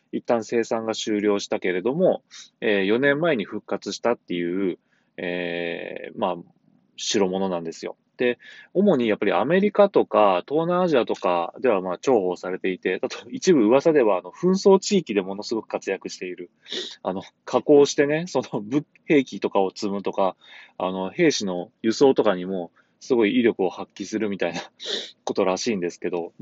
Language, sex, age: Japanese, male, 20-39